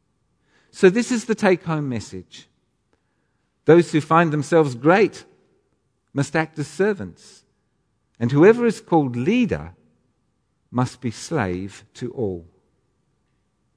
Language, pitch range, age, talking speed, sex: English, 120-165 Hz, 50-69, 110 wpm, male